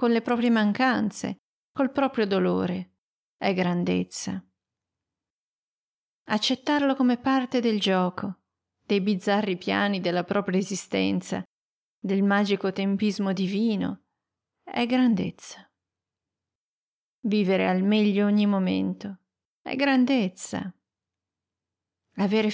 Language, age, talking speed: Italian, 40-59, 90 wpm